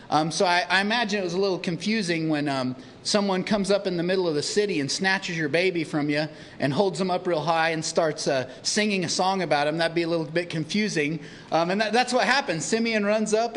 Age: 30-49